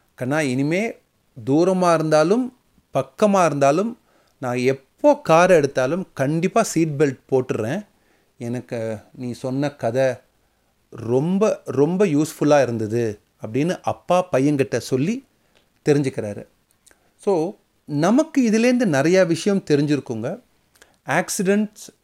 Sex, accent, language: male, native, Tamil